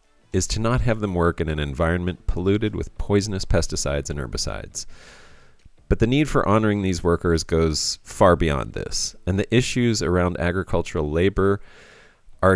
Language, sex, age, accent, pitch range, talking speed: English, male, 30-49, American, 80-110 Hz, 160 wpm